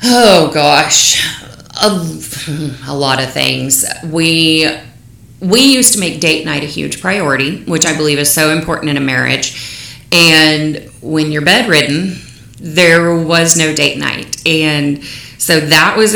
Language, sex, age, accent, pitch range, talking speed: English, female, 30-49, American, 145-175 Hz, 145 wpm